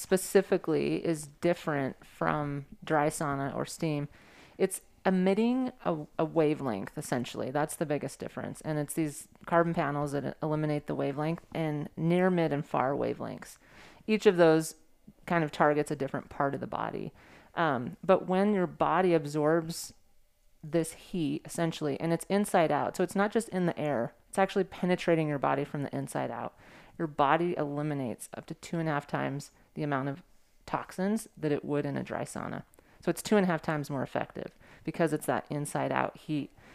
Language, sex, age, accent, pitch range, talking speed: English, female, 30-49, American, 145-175 Hz, 180 wpm